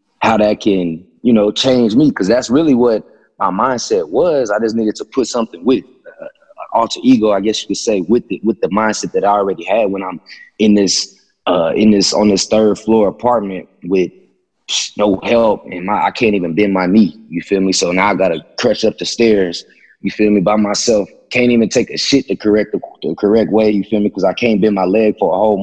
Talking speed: 235 wpm